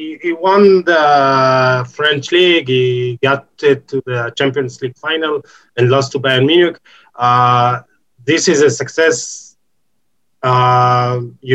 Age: 30-49